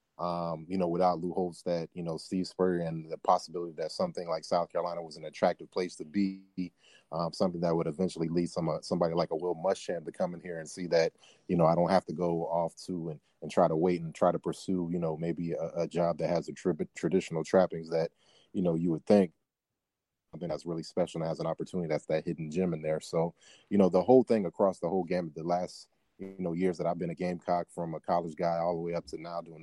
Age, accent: 30-49, American